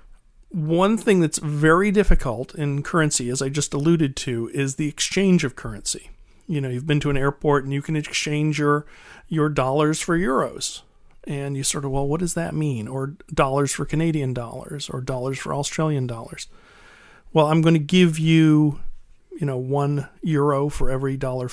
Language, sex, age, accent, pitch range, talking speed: English, male, 40-59, American, 135-160 Hz, 180 wpm